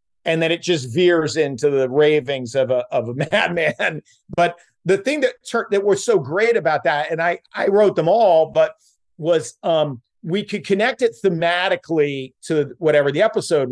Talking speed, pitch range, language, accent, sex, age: 185 wpm, 145-185 Hz, English, American, male, 40-59